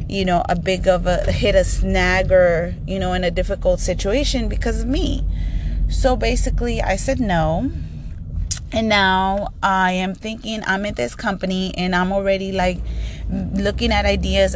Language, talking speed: English, 165 wpm